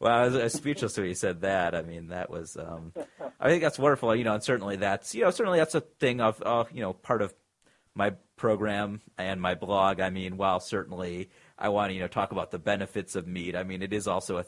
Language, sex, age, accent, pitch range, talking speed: English, male, 30-49, American, 90-110 Hz, 250 wpm